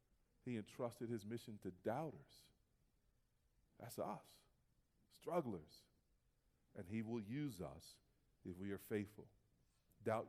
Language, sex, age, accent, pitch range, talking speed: English, male, 40-59, American, 120-150 Hz, 110 wpm